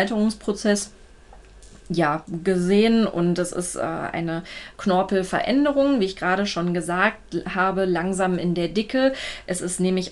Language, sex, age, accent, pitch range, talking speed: German, female, 20-39, German, 175-205 Hz, 130 wpm